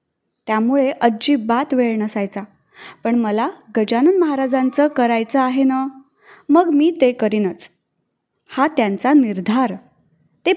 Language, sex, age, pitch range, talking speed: Marathi, female, 20-39, 230-310 Hz, 110 wpm